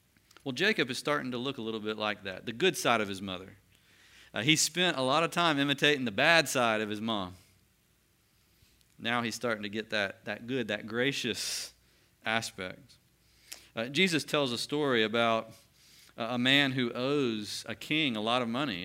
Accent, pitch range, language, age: American, 105-145 Hz, English, 40-59